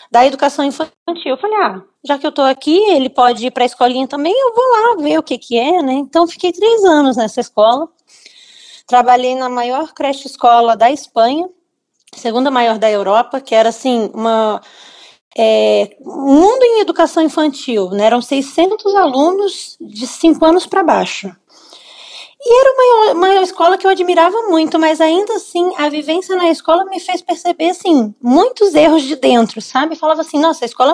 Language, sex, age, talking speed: Portuguese, female, 20-39, 175 wpm